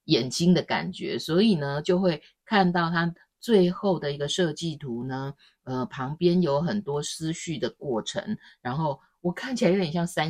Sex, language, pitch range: female, Chinese, 145-195 Hz